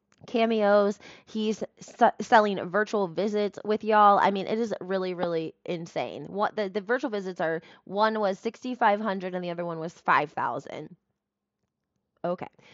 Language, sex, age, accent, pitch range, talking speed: English, female, 20-39, American, 200-260 Hz, 145 wpm